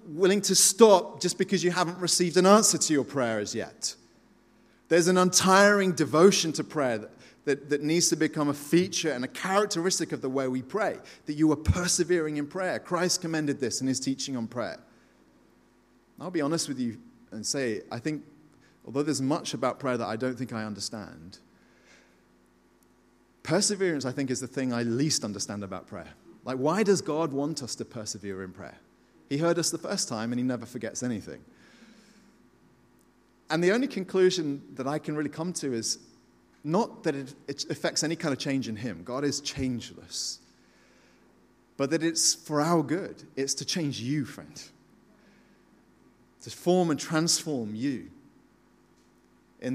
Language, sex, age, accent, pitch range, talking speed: English, male, 30-49, British, 120-170 Hz, 175 wpm